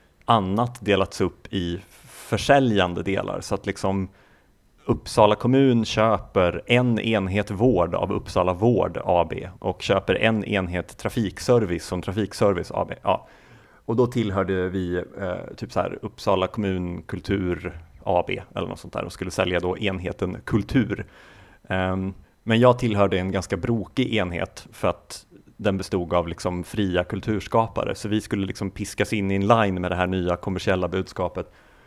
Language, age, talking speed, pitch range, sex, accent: Swedish, 30-49, 155 wpm, 95-110 Hz, male, native